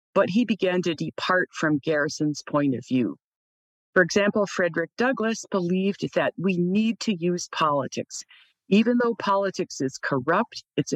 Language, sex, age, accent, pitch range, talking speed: English, female, 50-69, American, 160-215 Hz, 150 wpm